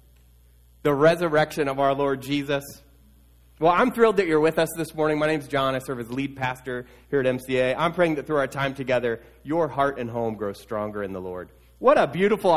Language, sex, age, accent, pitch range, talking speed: English, male, 30-49, American, 110-165 Hz, 215 wpm